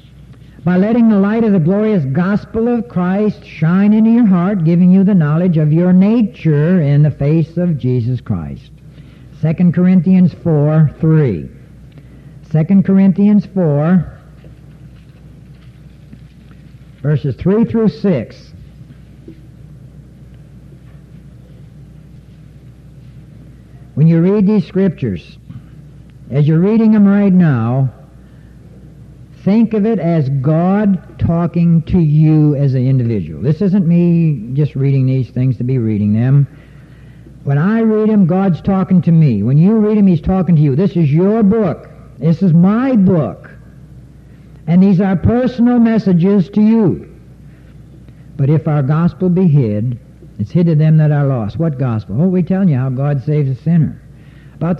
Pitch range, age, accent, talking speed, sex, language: 140-185 Hz, 60-79, American, 140 wpm, male, English